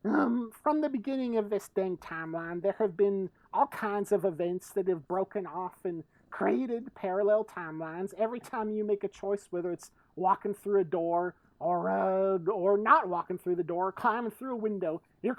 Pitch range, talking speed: 175-225 Hz, 190 wpm